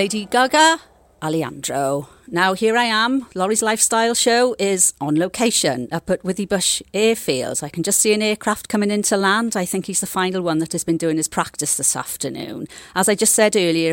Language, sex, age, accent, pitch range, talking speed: English, female, 40-59, British, 165-220 Hz, 200 wpm